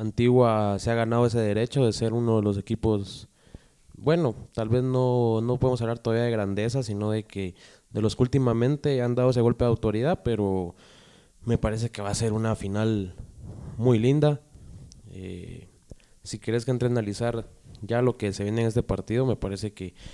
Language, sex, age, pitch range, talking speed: Spanish, male, 20-39, 105-130 Hz, 190 wpm